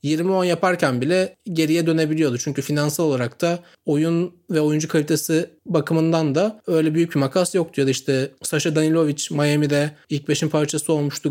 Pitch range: 140-165 Hz